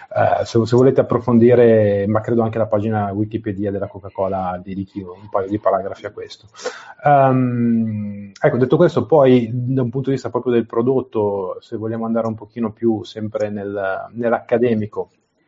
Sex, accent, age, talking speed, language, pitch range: male, native, 30-49, 165 wpm, Italian, 100-115 Hz